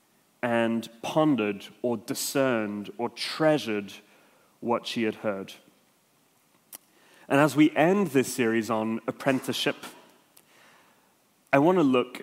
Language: English